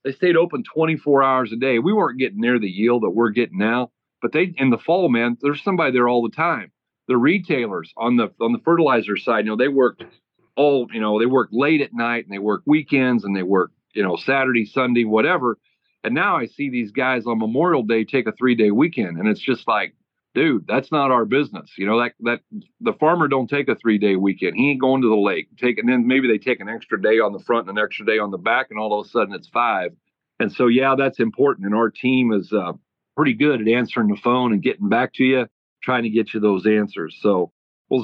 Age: 40-59